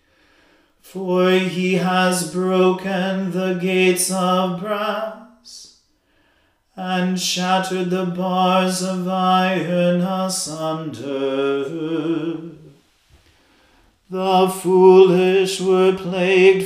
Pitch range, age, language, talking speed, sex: 175-190 Hz, 40-59, English, 70 wpm, male